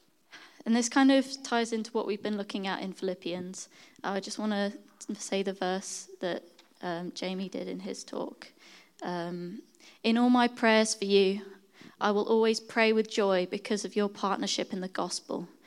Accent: British